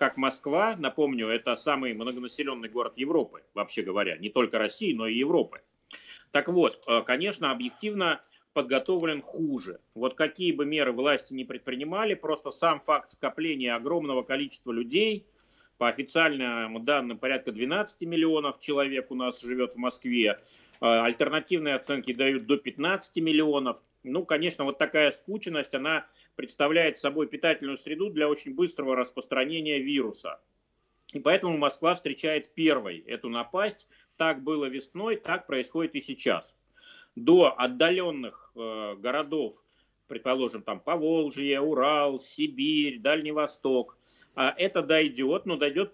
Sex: male